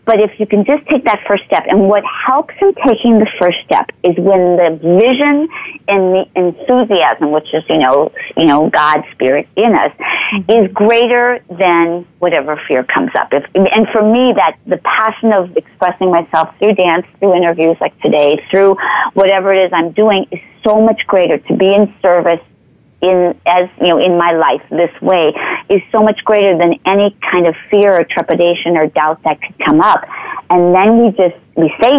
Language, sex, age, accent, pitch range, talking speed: English, female, 40-59, American, 170-220 Hz, 195 wpm